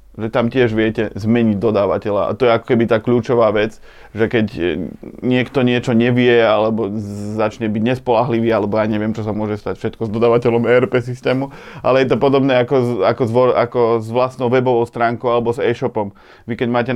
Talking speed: 175 wpm